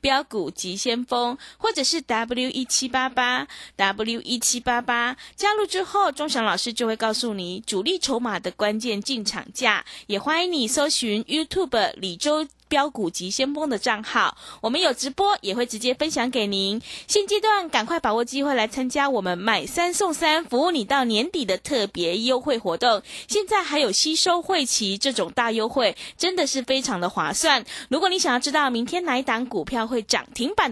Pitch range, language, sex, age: 220-310 Hz, Chinese, female, 20-39